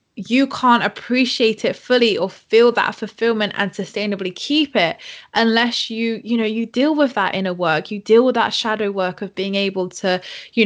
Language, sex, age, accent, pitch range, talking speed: English, female, 20-39, British, 185-225 Hz, 190 wpm